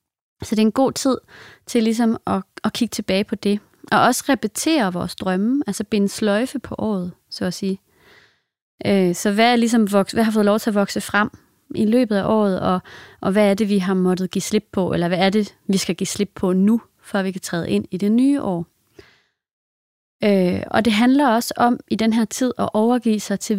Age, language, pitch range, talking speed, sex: 30-49, English, 190-225 Hz, 215 wpm, female